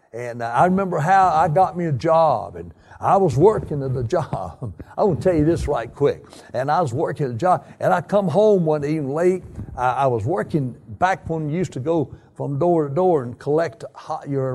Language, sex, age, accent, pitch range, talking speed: English, male, 60-79, American, 125-180 Hz, 225 wpm